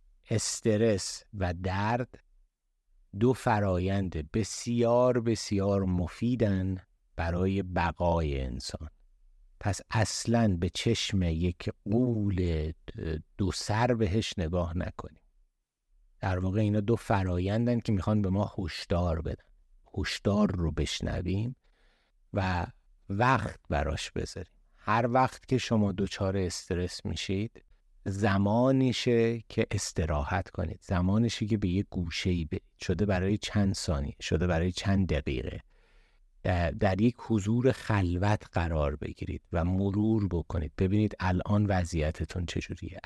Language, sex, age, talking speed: Persian, male, 50-69, 110 wpm